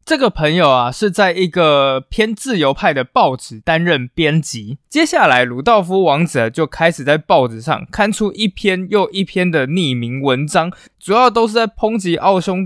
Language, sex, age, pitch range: Chinese, male, 20-39, 135-195 Hz